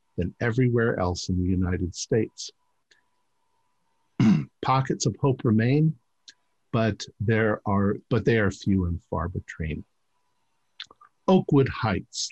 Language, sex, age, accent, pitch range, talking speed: English, male, 50-69, American, 105-135 Hz, 100 wpm